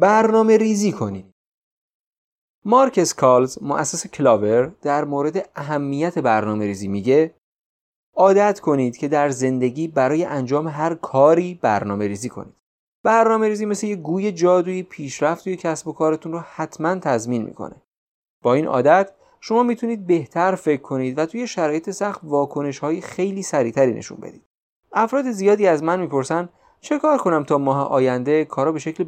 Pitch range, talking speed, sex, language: 130-185 Hz, 150 wpm, male, Persian